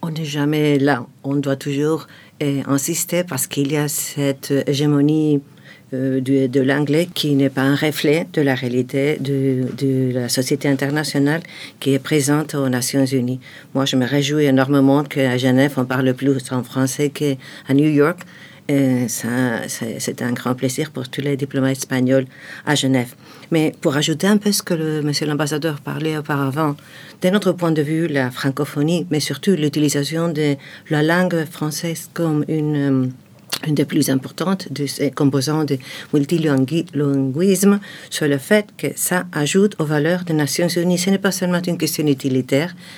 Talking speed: 165 wpm